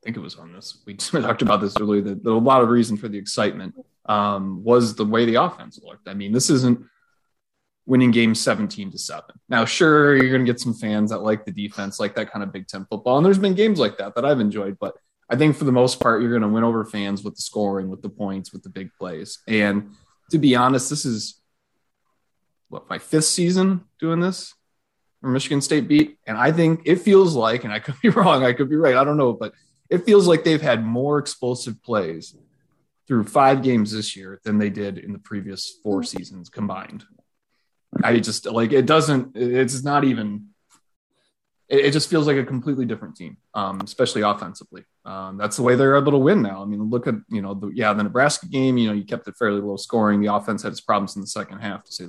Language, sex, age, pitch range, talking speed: English, male, 20-39, 105-140 Hz, 230 wpm